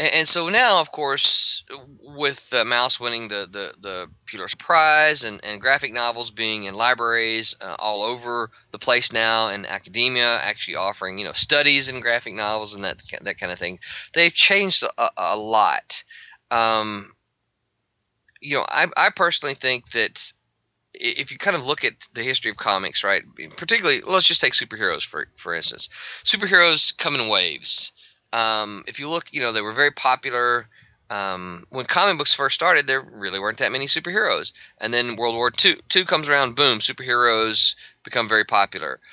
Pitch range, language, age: 110-140 Hz, English, 20-39